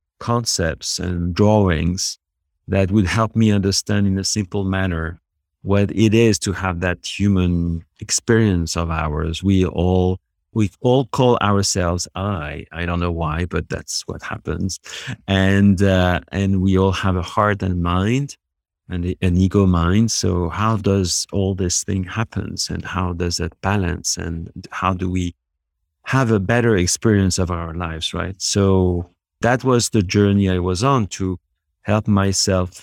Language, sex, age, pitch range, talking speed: English, male, 50-69, 85-100 Hz, 160 wpm